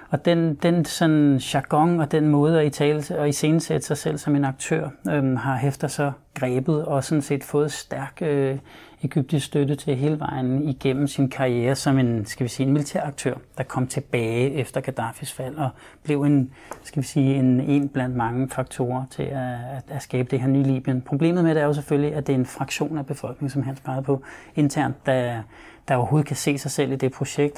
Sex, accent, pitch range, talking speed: male, native, 130-145 Hz, 220 wpm